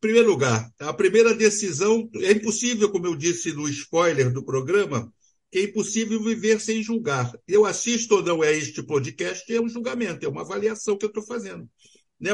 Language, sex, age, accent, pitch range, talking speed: Portuguese, male, 60-79, Brazilian, 150-205 Hz, 180 wpm